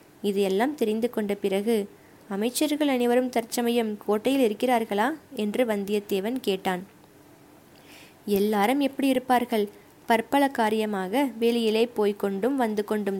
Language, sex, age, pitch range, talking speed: Tamil, female, 20-39, 205-245 Hz, 95 wpm